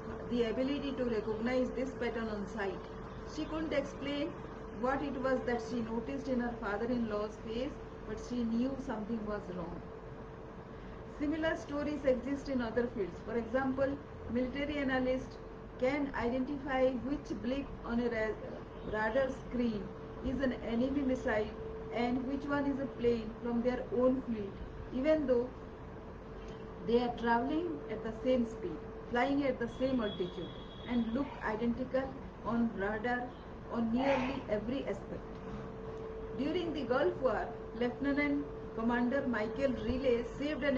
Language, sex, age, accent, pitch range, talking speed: English, female, 40-59, Indian, 225-265 Hz, 135 wpm